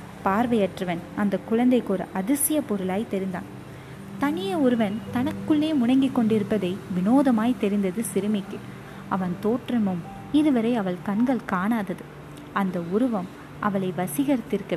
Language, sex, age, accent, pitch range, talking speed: Tamil, female, 20-39, native, 190-235 Hz, 100 wpm